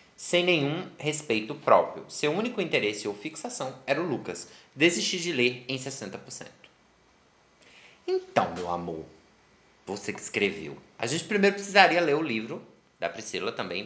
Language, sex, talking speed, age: Portuguese, male, 145 wpm, 20-39